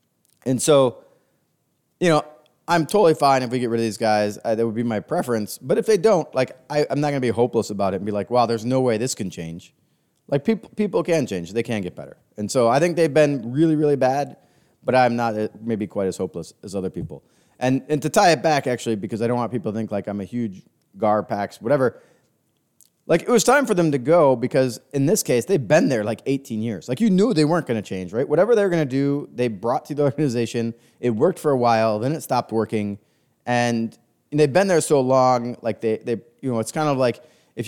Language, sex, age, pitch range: English, male, 20-39, 115-150 Hz